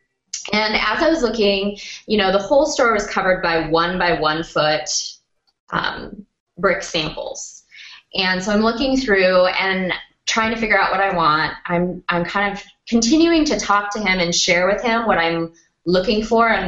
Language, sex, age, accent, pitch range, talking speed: English, female, 20-39, American, 170-220 Hz, 185 wpm